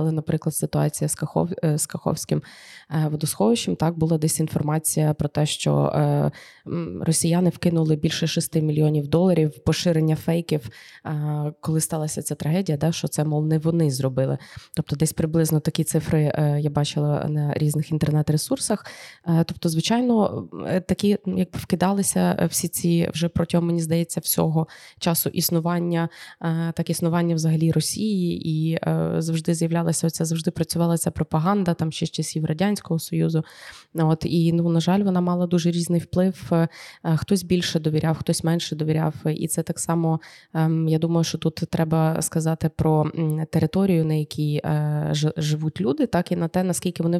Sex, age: female, 20-39